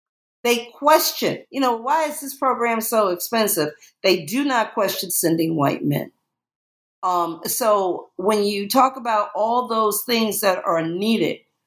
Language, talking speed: English, 150 wpm